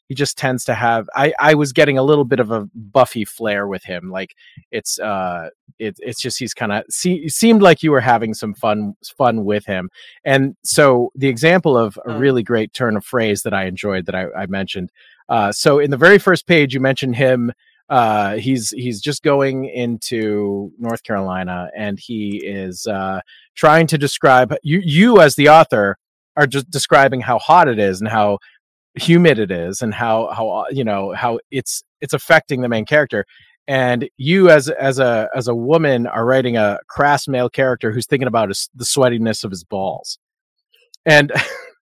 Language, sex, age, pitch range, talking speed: English, male, 30-49, 110-150 Hz, 190 wpm